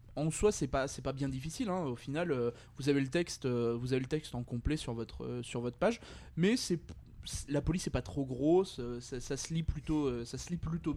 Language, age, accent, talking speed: French, 20-39, French, 265 wpm